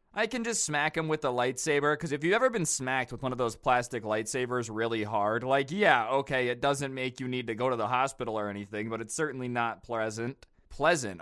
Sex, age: male, 20-39